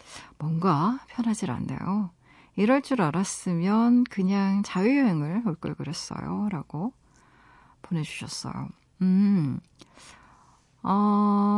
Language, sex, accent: Korean, female, native